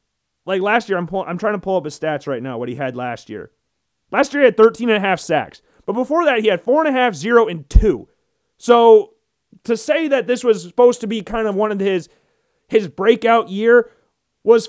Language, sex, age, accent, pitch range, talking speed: English, male, 30-49, American, 190-250 Hz, 235 wpm